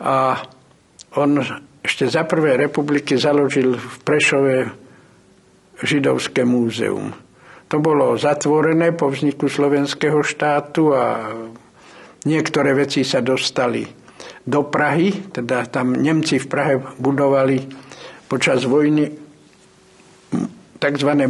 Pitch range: 135-150 Hz